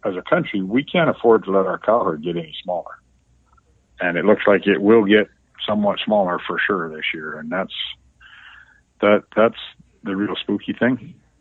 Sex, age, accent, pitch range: male, 50-69, American, 90-110 Hz